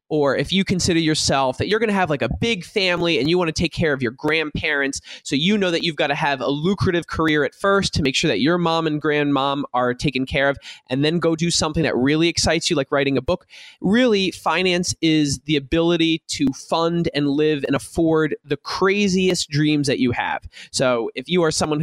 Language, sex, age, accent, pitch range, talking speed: English, male, 20-39, American, 135-170 Hz, 230 wpm